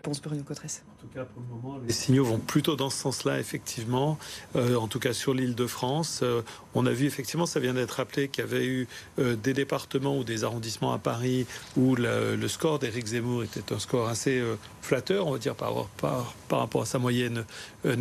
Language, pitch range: French, 120-145 Hz